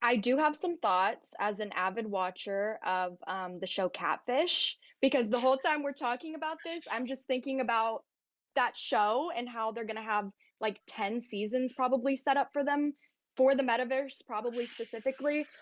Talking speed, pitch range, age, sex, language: 175 wpm, 200-275 Hz, 10-29, female, English